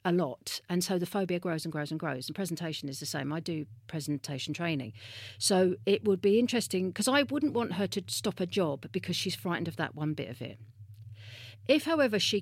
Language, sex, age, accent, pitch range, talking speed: English, female, 40-59, British, 155-215 Hz, 220 wpm